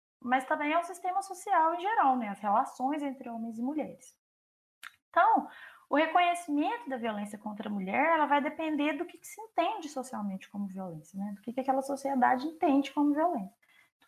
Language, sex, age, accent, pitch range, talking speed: Portuguese, female, 20-39, Brazilian, 235-310 Hz, 190 wpm